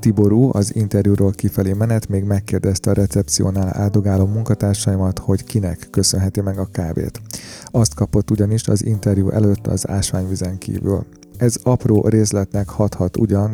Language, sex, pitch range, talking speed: Hungarian, male, 95-110 Hz, 135 wpm